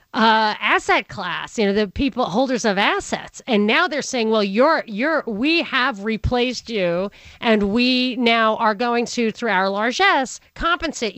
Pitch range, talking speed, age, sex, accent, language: 190-255 Hz, 165 wpm, 40-59, female, American, English